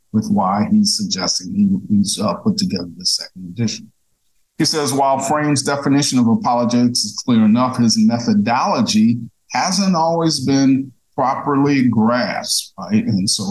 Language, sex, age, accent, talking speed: English, male, 50-69, American, 140 wpm